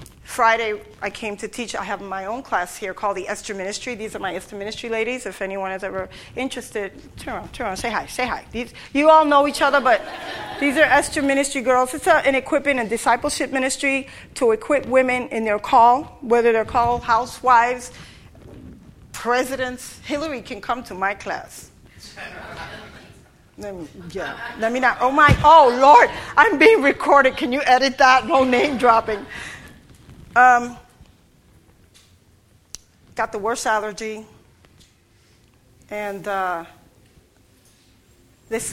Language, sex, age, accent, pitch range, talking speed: English, female, 40-59, American, 200-255 Hz, 150 wpm